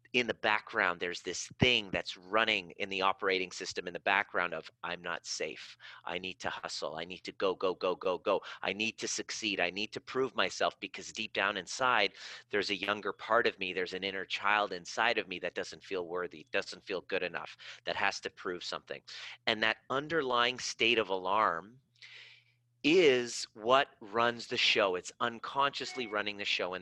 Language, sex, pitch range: English, male, 100-125 Hz